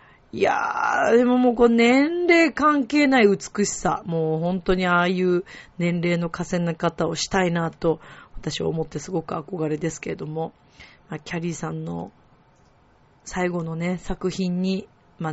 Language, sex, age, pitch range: Japanese, female, 40-59, 170-245 Hz